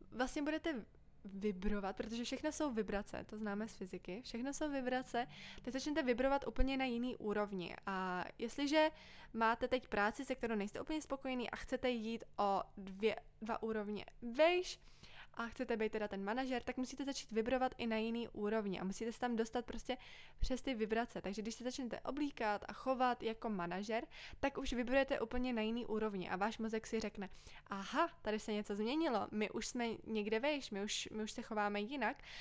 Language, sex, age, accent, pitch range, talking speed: Czech, female, 20-39, native, 215-260 Hz, 185 wpm